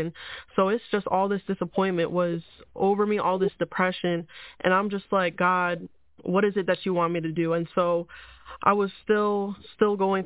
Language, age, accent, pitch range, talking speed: English, 20-39, American, 170-190 Hz, 195 wpm